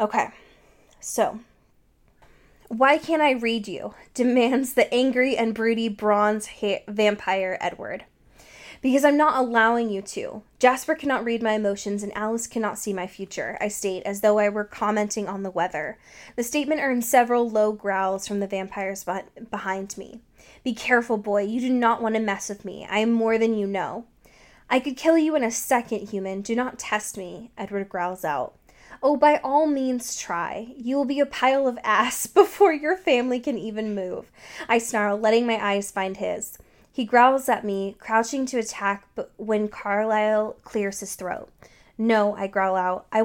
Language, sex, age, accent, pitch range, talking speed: English, female, 10-29, American, 205-255 Hz, 180 wpm